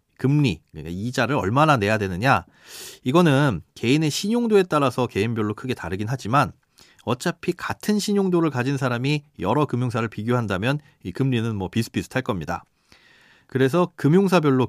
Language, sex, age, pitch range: Korean, male, 40-59, 110-165 Hz